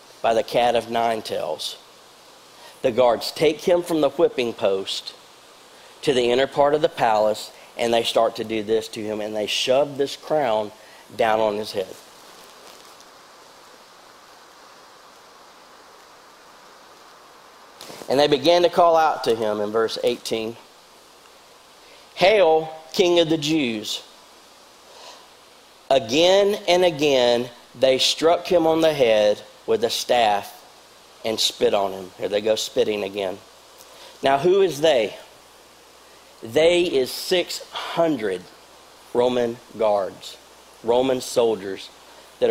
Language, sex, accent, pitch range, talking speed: English, male, American, 115-165 Hz, 125 wpm